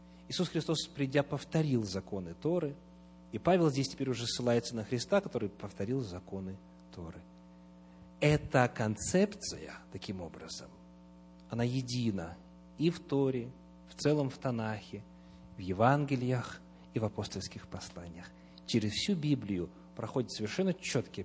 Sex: male